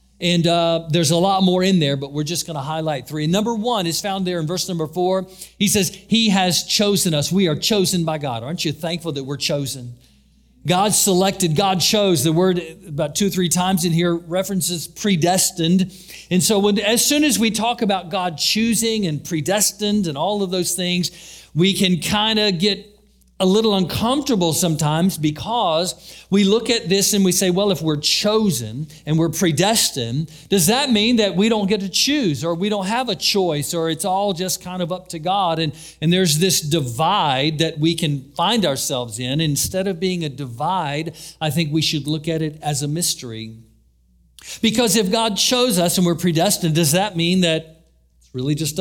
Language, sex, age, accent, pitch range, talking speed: English, male, 50-69, American, 155-195 Hz, 200 wpm